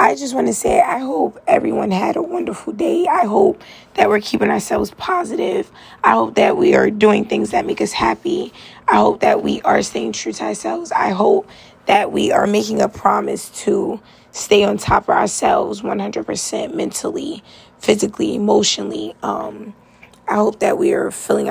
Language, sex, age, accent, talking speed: English, female, 20-39, American, 180 wpm